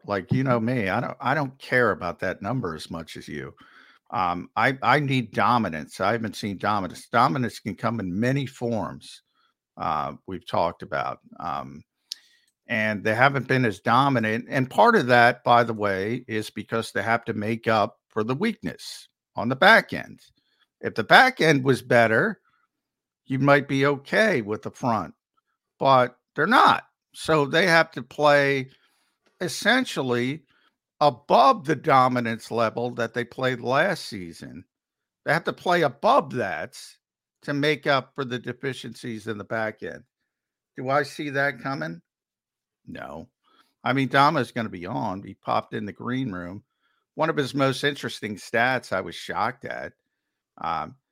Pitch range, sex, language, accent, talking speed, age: 115-140 Hz, male, English, American, 165 wpm, 50-69